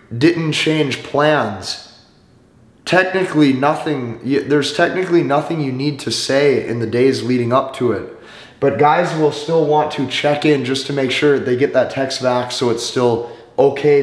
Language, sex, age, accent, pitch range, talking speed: English, male, 20-39, American, 120-150 Hz, 170 wpm